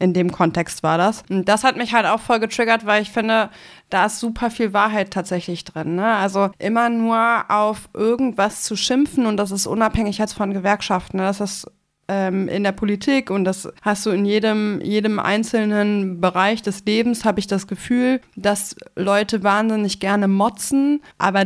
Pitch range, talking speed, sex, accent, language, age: 195-225 Hz, 180 wpm, female, German, German, 20-39